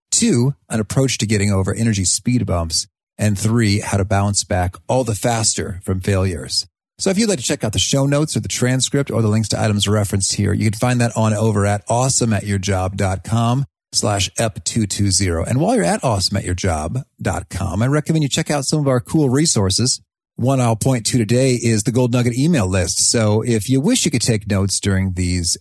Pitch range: 100-125 Hz